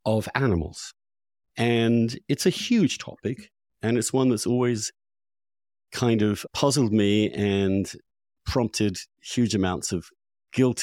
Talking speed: 120 wpm